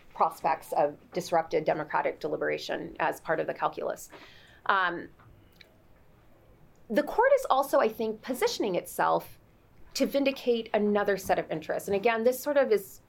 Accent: American